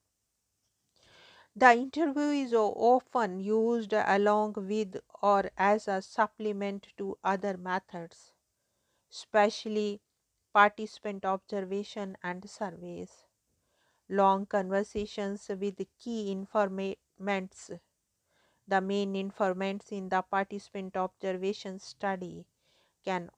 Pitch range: 190-210 Hz